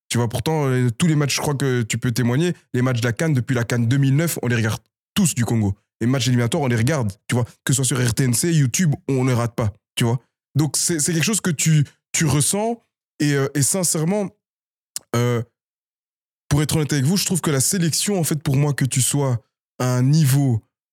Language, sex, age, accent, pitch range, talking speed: French, male, 20-39, French, 120-150 Hz, 235 wpm